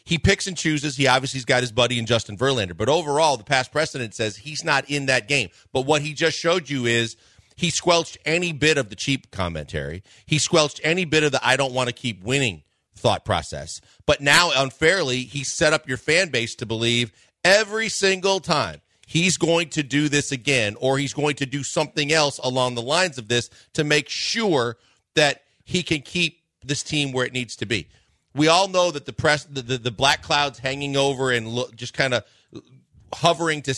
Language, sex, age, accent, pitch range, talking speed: English, male, 40-59, American, 115-150 Hz, 210 wpm